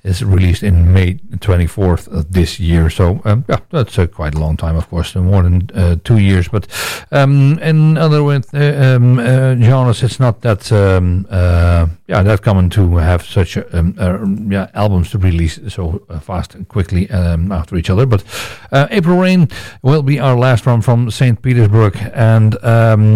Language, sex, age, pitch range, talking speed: English, male, 60-79, 95-120 Hz, 190 wpm